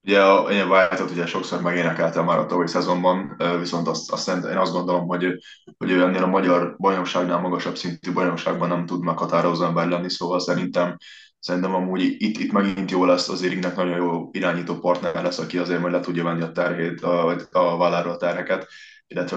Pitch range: 85-90 Hz